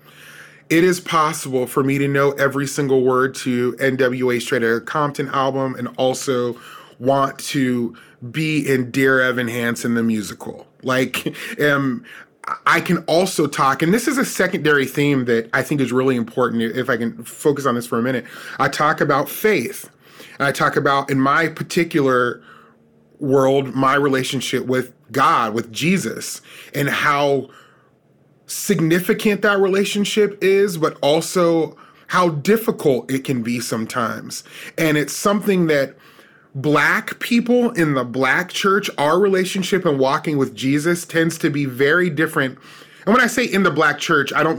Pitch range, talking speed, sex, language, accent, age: 130-165 Hz, 155 wpm, male, English, American, 20-39